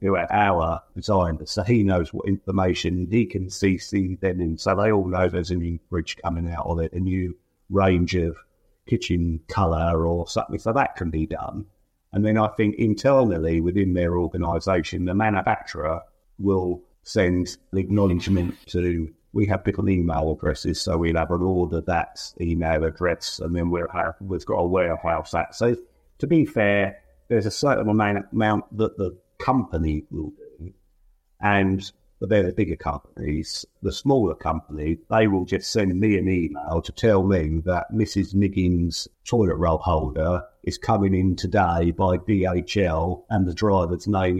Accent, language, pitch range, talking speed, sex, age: British, English, 85-100 Hz, 170 wpm, male, 50-69